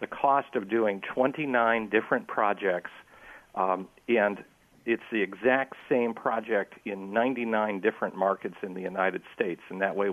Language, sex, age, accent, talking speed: English, male, 50-69, American, 150 wpm